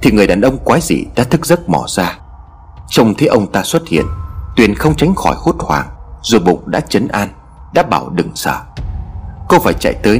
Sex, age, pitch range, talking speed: male, 30-49, 70-105 Hz, 210 wpm